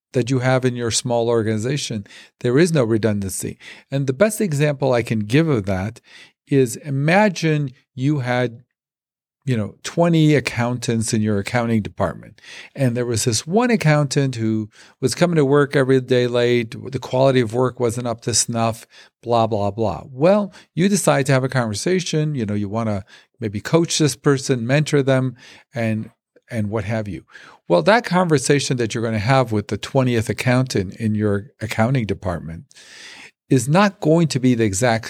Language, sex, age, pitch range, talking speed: English, male, 50-69, 115-150 Hz, 175 wpm